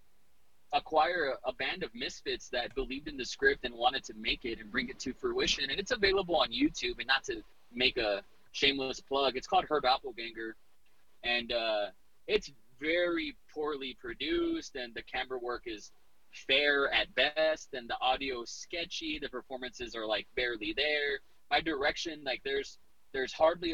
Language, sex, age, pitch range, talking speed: English, male, 20-39, 125-185 Hz, 170 wpm